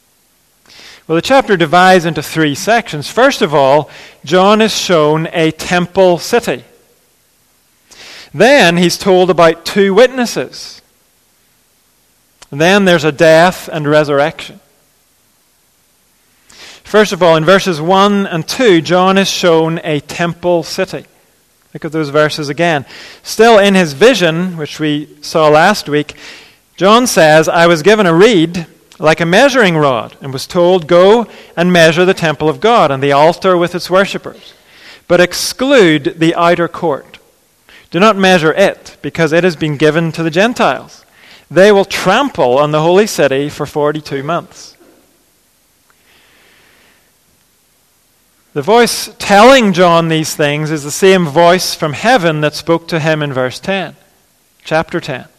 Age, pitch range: 40-59, 155-190 Hz